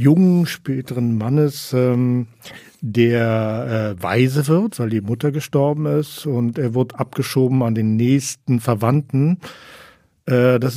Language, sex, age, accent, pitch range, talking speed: German, male, 50-69, German, 120-145 Hz, 130 wpm